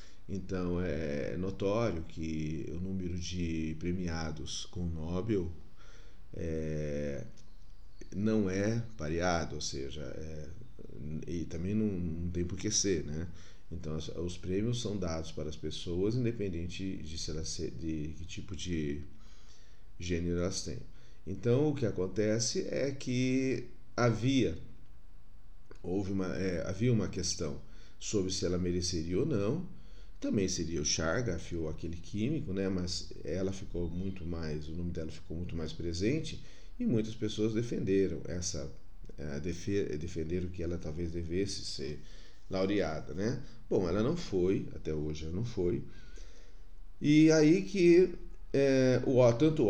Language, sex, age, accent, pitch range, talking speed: Portuguese, male, 40-59, Brazilian, 80-105 Hz, 130 wpm